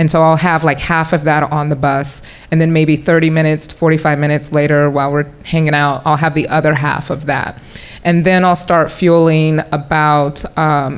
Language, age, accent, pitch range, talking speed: English, 30-49, American, 155-185 Hz, 210 wpm